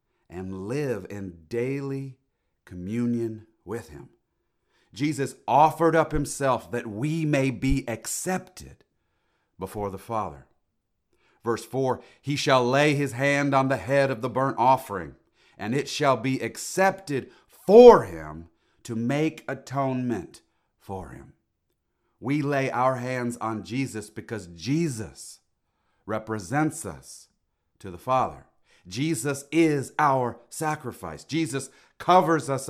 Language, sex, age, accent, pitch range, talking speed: English, male, 40-59, American, 110-145 Hz, 120 wpm